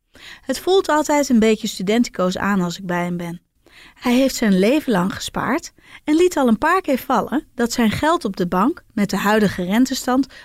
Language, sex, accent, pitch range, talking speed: Dutch, female, Dutch, 195-275 Hz, 200 wpm